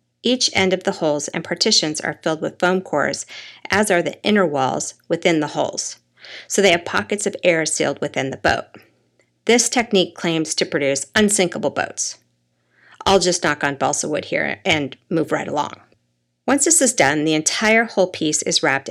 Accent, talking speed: American, 185 wpm